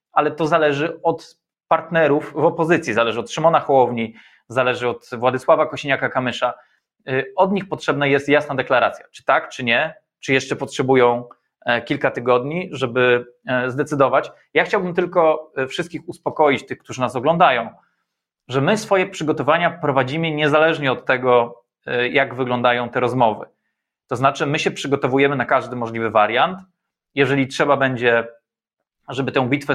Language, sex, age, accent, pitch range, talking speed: Polish, male, 20-39, native, 130-155 Hz, 135 wpm